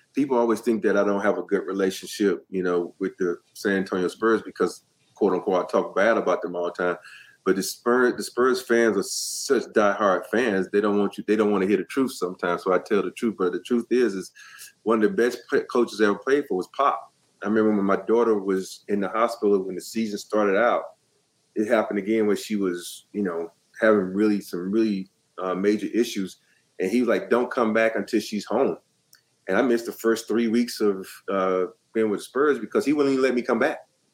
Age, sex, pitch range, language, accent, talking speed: 30-49, male, 95-115 Hz, English, American, 230 wpm